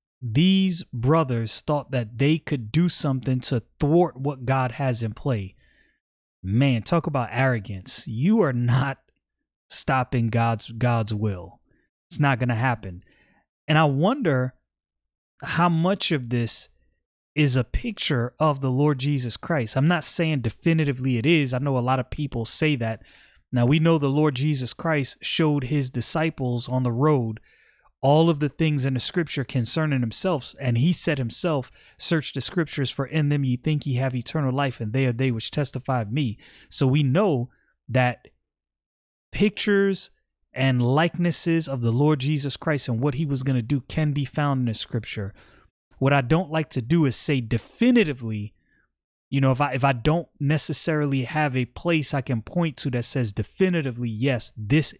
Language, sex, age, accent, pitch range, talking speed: English, male, 30-49, American, 120-155 Hz, 175 wpm